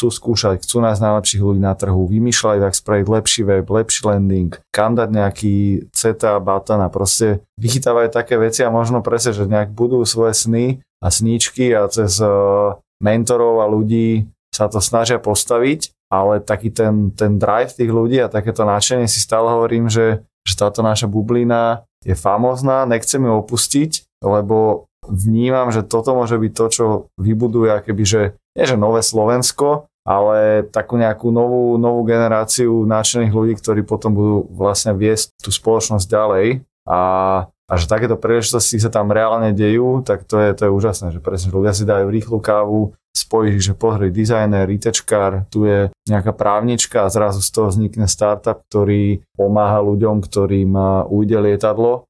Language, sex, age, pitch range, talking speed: Slovak, male, 20-39, 100-115 Hz, 165 wpm